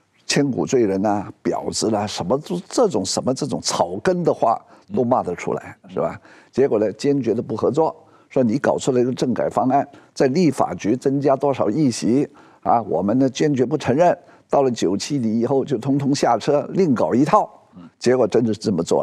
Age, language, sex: 50-69, Chinese, male